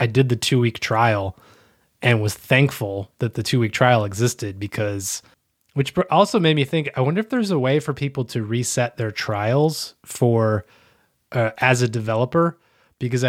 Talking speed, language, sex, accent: 175 wpm, English, male, American